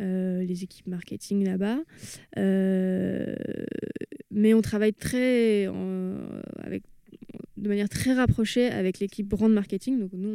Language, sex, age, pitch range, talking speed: French, female, 20-39, 185-215 Hz, 135 wpm